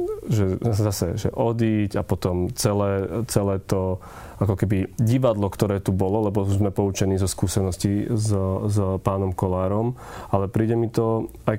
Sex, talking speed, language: male, 145 wpm, Slovak